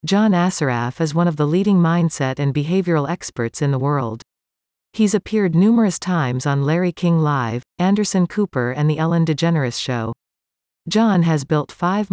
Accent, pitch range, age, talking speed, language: American, 140-180 Hz, 40-59, 165 wpm, English